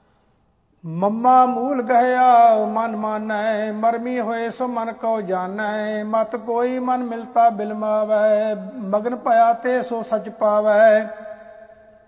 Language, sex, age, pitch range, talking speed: English, male, 50-69, 215-240 Hz, 105 wpm